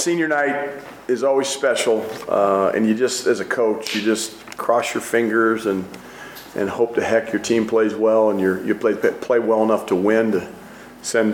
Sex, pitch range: male, 105-120 Hz